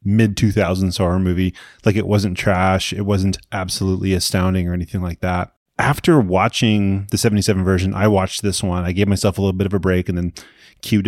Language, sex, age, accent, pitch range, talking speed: English, male, 30-49, American, 95-120 Hz, 200 wpm